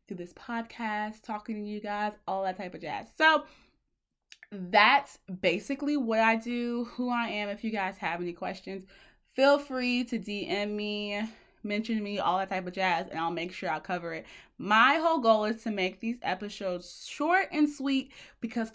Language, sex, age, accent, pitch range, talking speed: English, female, 20-39, American, 190-255 Hz, 185 wpm